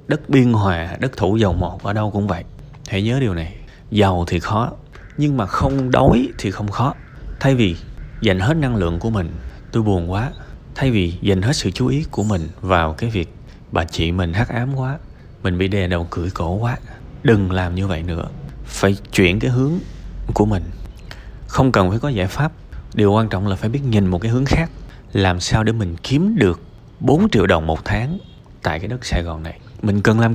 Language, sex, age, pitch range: Vietnamese, male, 20-39, 95-140 Hz